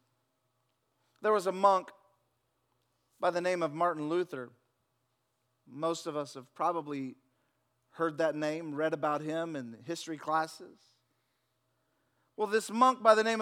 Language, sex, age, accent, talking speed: English, male, 40-59, American, 135 wpm